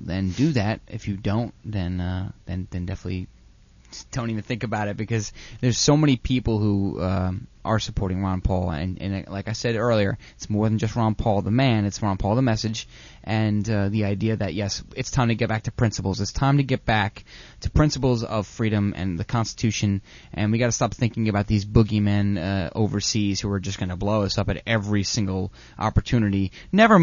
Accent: American